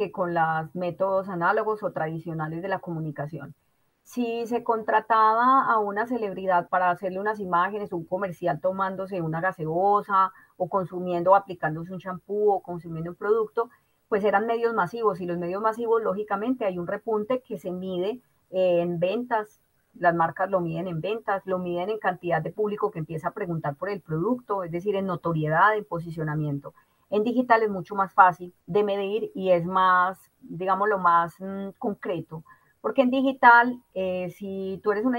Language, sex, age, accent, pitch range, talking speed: Spanish, female, 30-49, Colombian, 180-225 Hz, 170 wpm